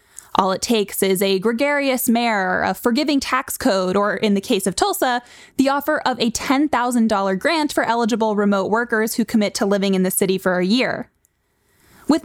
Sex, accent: female, American